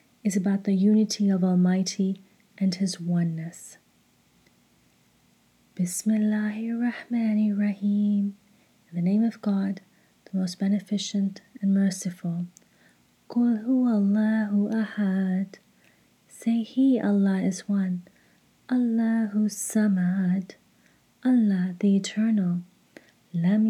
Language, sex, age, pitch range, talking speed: English, female, 30-49, 190-220 Hz, 90 wpm